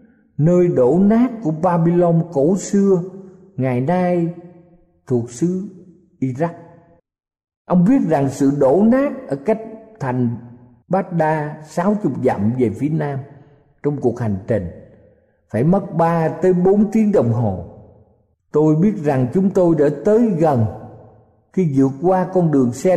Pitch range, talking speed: 120-180 Hz, 140 wpm